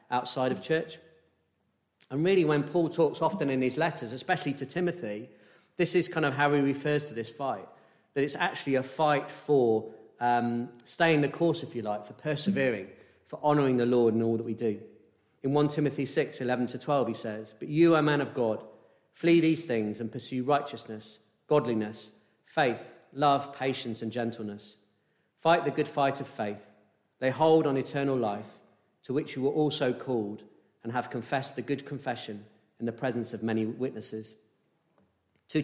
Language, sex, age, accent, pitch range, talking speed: English, male, 40-59, British, 115-145 Hz, 180 wpm